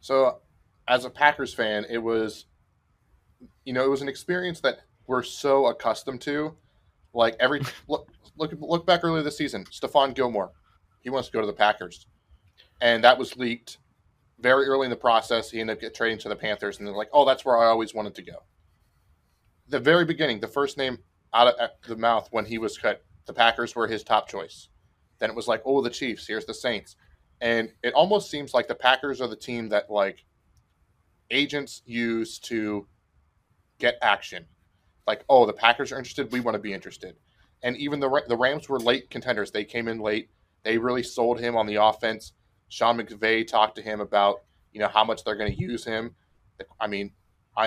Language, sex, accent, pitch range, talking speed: English, male, American, 105-130 Hz, 200 wpm